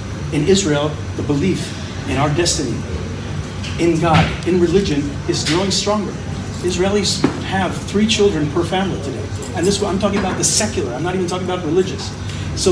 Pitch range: 120-170 Hz